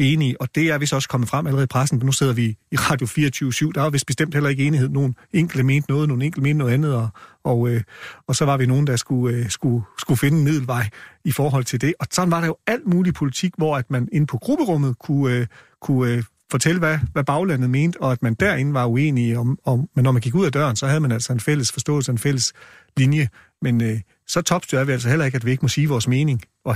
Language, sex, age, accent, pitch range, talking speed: Danish, male, 40-59, native, 125-150 Hz, 255 wpm